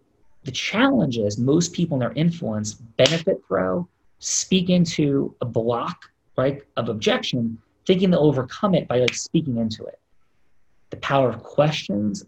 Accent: American